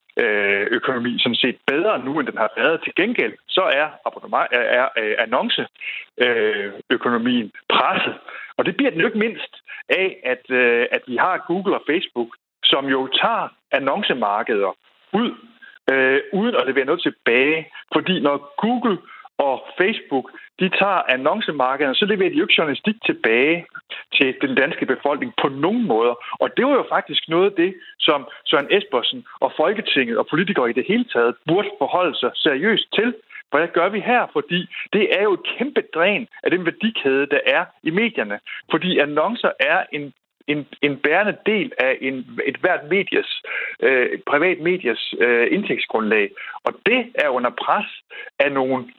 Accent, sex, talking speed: native, male, 160 wpm